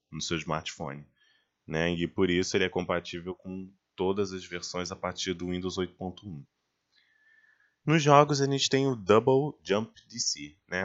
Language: Portuguese